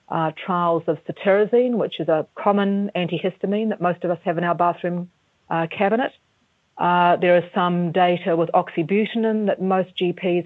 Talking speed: 165 wpm